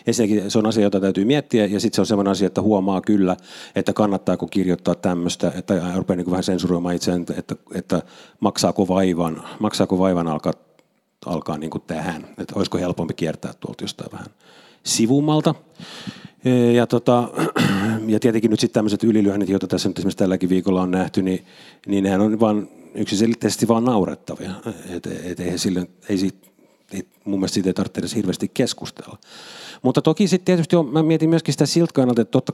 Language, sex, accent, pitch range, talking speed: Finnish, male, native, 95-135 Hz, 165 wpm